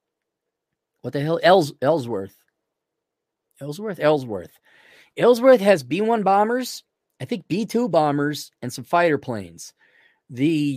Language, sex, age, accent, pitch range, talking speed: English, male, 30-49, American, 130-175 Hz, 110 wpm